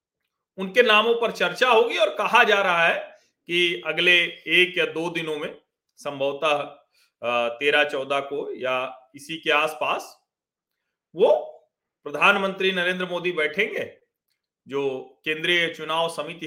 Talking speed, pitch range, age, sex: 115 wpm, 160-245 Hz, 40-59, male